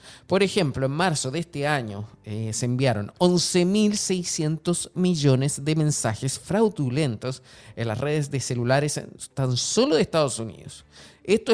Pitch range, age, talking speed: 115-155 Hz, 30-49, 135 wpm